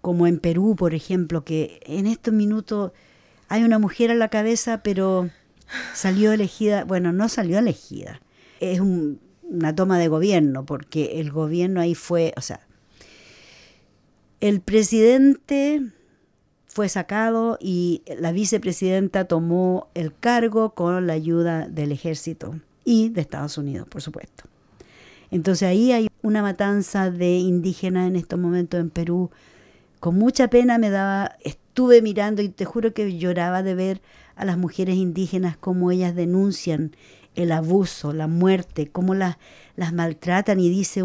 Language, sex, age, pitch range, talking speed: English, female, 50-69, 170-215 Hz, 145 wpm